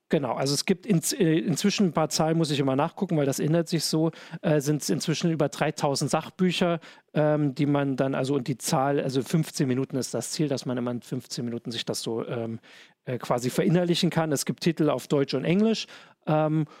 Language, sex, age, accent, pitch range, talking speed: German, male, 40-59, German, 140-180 Hz, 220 wpm